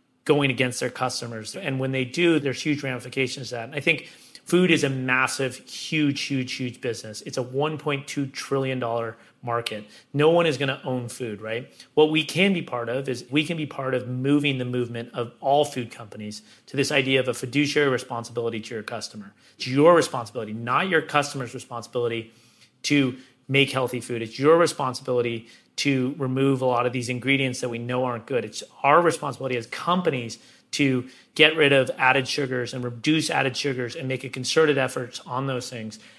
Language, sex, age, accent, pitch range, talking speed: English, male, 30-49, American, 125-145 Hz, 190 wpm